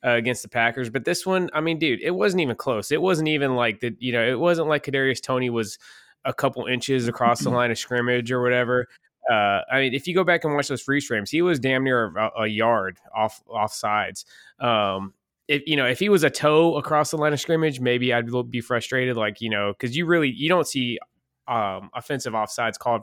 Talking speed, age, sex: 235 wpm, 20-39, male